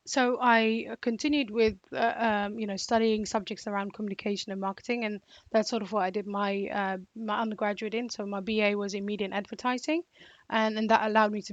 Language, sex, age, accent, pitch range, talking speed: English, female, 10-29, British, 205-225 Hz, 205 wpm